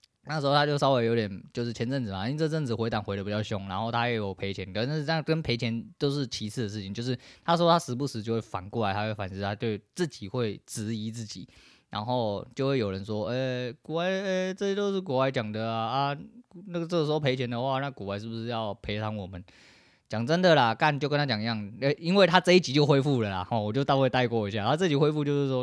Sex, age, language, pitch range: male, 20-39, Chinese, 110-150 Hz